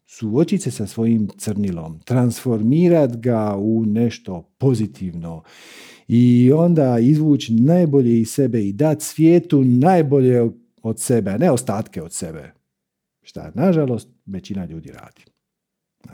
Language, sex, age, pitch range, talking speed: Croatian, male, 50-69, 110-160 Hz, 115 wpm